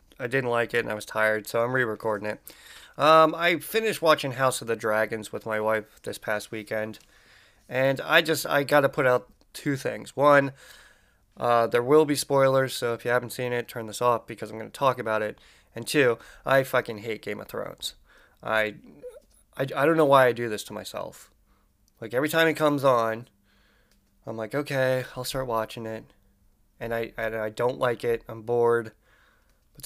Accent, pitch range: American, 110-140 Hz